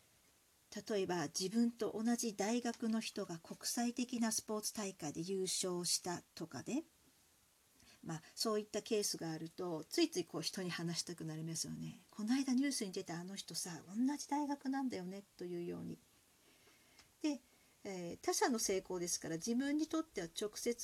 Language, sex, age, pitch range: Japanese, female, 50-69, 190-270 Hz